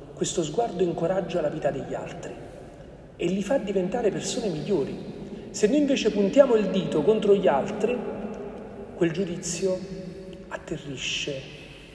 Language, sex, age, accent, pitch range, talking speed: Italian, male, 40-59, native, 150-190 Hz, 125 wpm